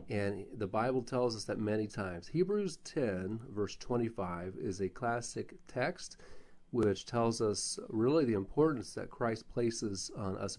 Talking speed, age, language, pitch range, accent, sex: 155 wpm, 40-59, English, 100-125 Hz, American, male